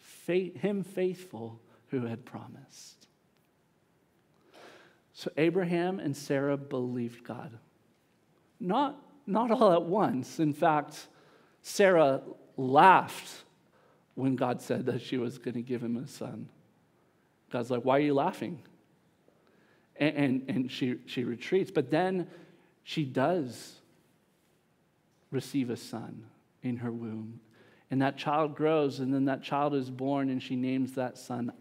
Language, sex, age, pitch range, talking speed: English, male, 50-69, 120-155 Hz, 130 wpm